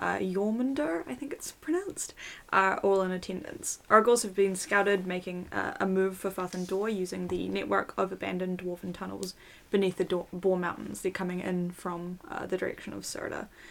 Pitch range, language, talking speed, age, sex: 185-210 Hz, English, 180 wpm, 10-29, female